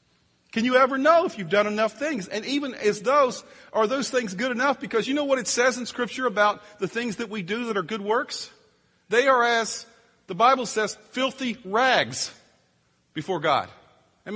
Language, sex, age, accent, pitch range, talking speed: English, male, 40-59, American, 195-245 Hz, 195 wpm